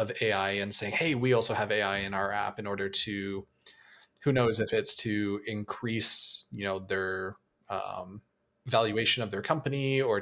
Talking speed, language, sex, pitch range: 175 wpm, English, male, 100-125 Hz